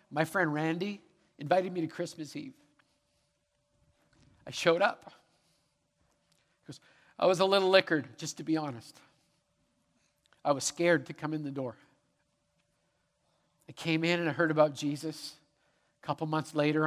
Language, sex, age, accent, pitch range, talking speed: English, male, 50-69, American, 140-165 Hz, 140 wpm